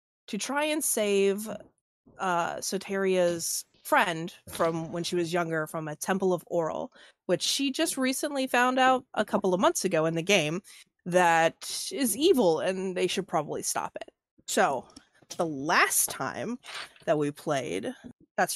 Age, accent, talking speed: 20-39, American, 155 wpm